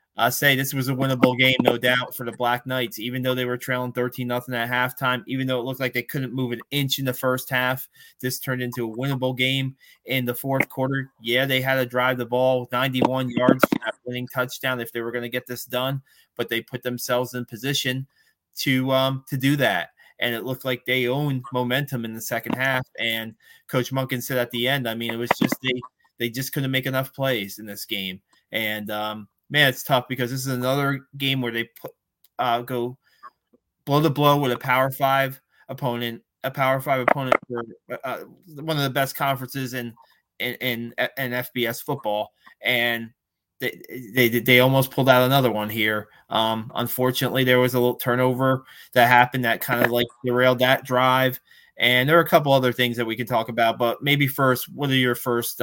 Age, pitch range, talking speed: 20-39, 120-130 Hz, 210 wpm